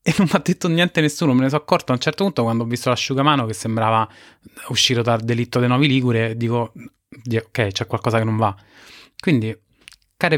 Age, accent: 20-39, native